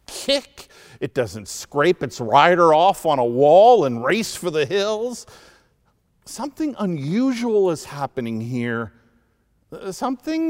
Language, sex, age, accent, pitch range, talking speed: English, male, 50-69, American, 120-180 Hz, 120 wpm